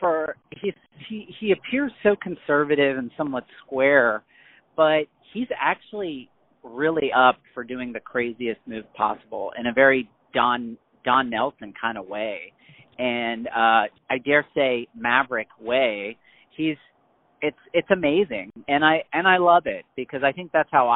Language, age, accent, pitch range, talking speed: English, 40-59, American, 120-155 Hz, 150 wpm